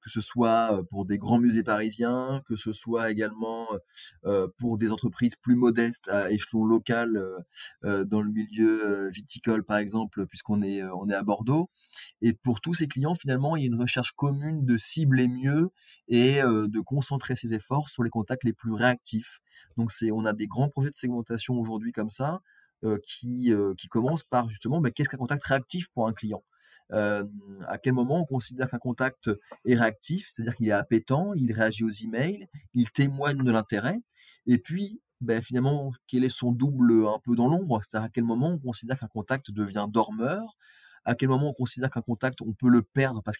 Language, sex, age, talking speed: French, male, 20-39, 185 wpm